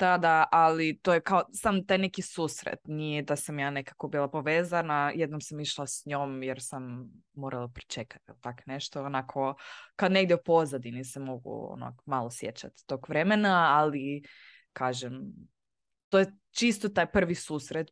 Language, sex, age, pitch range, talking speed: Croatian, female, 20-39, 140-175 Hz, 155 wpm